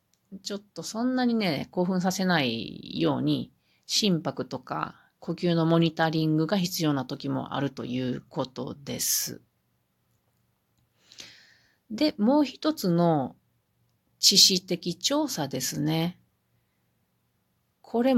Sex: female